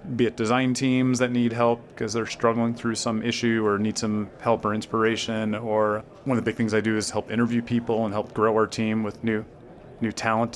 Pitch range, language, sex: 110-125 Hz, English, male